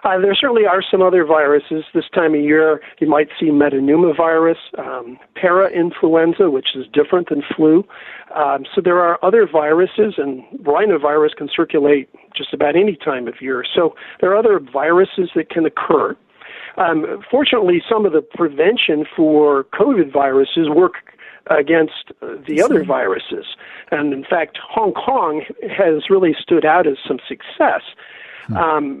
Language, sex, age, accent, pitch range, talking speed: English, male, 50-69, American, 145-195 Hz, 150 wpm